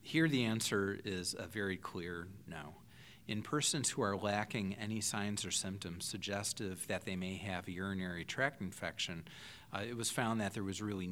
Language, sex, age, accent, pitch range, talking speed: English, male, 40-59, American, 95-115 Hz, 185 wpm